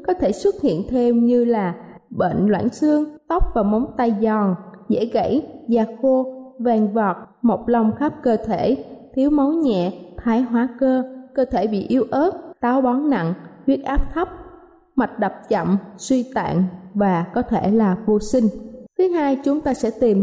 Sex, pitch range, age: female, 210-260 Hz, 20-39